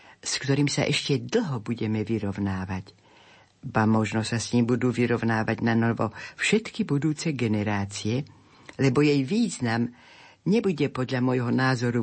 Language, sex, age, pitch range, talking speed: Slovak, female, 60-79, 115-145 Hz, 130 wpm